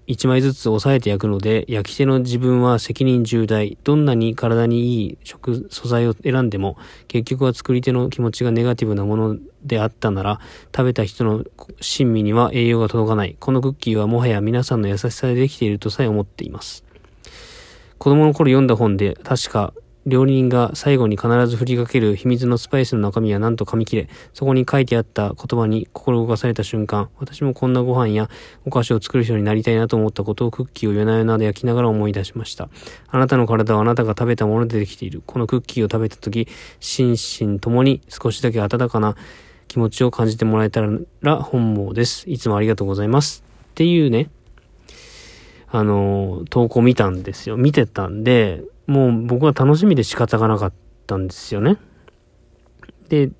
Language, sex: Japanese, male